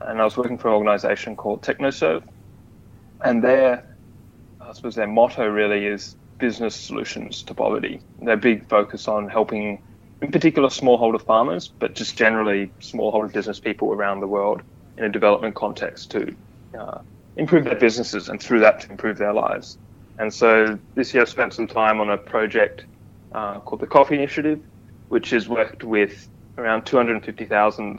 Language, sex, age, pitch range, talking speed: English, male, 20-39, 105-120 Hz, 160 wpm